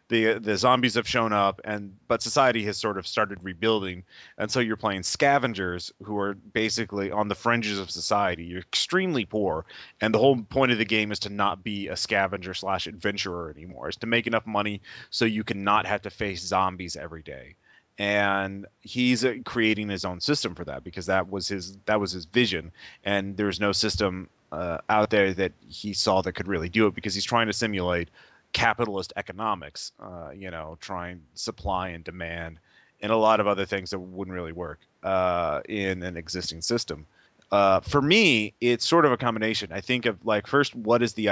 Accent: American